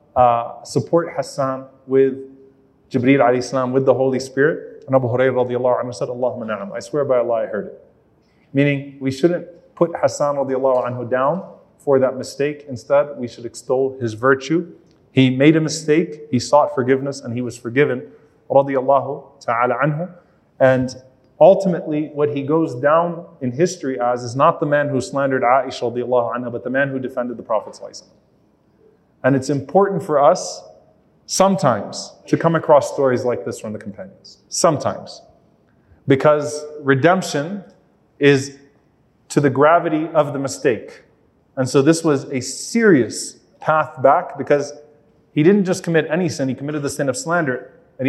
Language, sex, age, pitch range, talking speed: English, male, 30-49, 125-150 Hz, 155 wpm